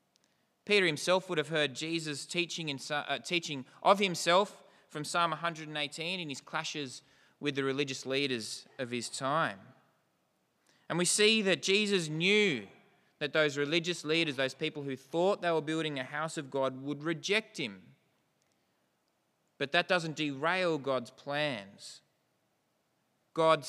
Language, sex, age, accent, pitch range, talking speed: English, male, 20-39, Australian, 135-175 Hz, 140 wpm